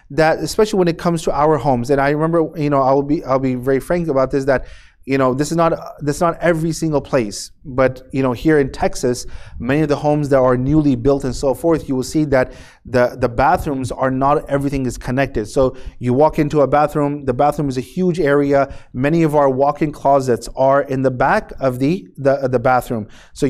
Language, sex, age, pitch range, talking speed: English, male, 30-49, 135-165 Hz, 230 wpm